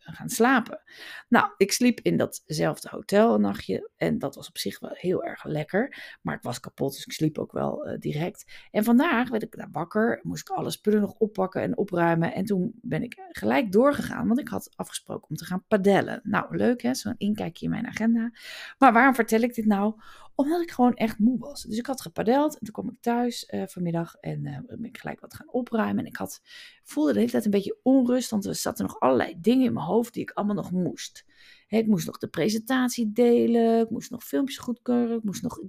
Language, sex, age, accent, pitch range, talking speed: Dutch, female, 30-49, Dutch, 195-250 Hz, 230 wpm